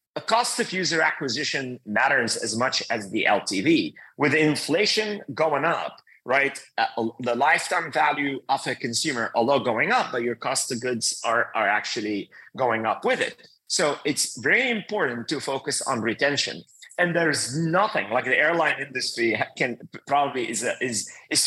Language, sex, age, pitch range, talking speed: English, male, 30-49, 135-200 Hz, 160 wpm